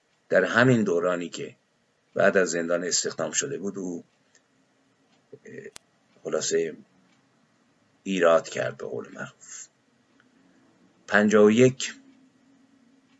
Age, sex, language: 50-69, male, Persian